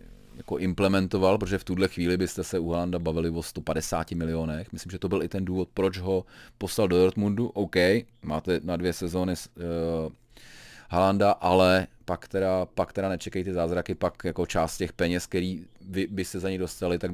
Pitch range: 85-110 Hz